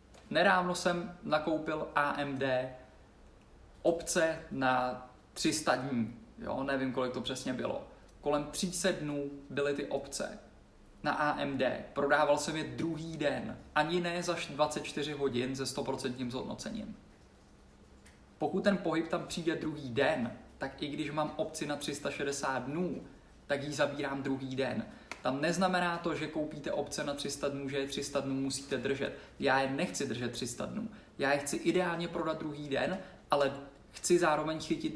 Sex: male